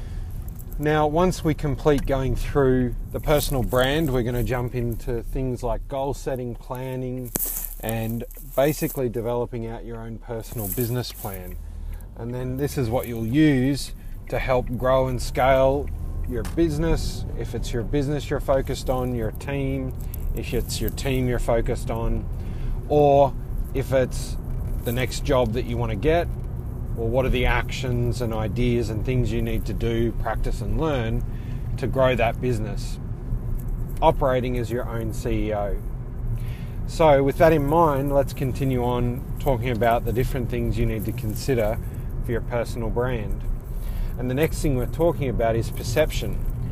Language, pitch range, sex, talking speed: English, 115-130 Hz, male, 155 wpm